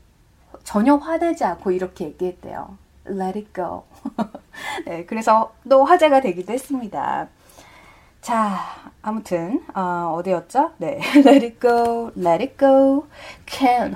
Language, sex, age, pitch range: Korean, female, 30-49, 185-285 Hz